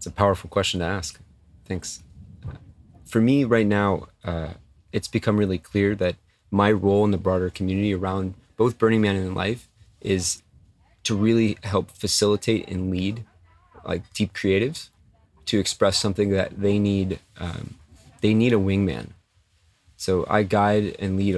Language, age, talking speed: English, 30-49, 155 wpm